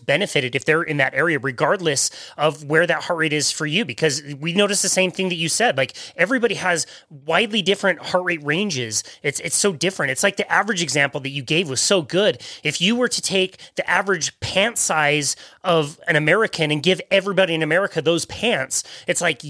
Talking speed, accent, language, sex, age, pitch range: 210 wpm, American, English, male, 30-49, 155-200 Hz